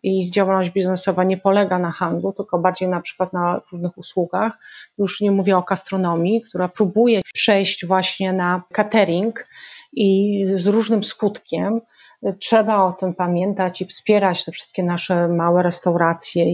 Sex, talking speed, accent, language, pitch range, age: female, 150 wpm, native, Polish, 180-215 Hz, 30-49